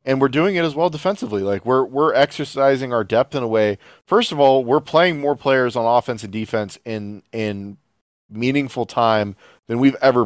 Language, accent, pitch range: English, American, 105-130 Hz